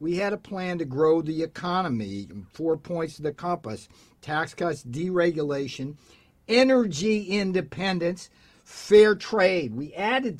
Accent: American